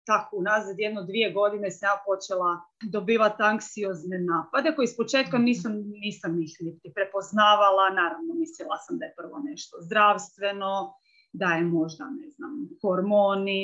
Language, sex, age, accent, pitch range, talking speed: Croatian, female, 30-49, native, 185-245 Hz, 135 wpm